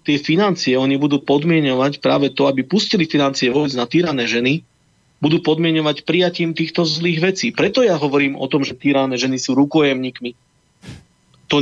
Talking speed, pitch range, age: 160 wpm, 135-160 Hz, 40-59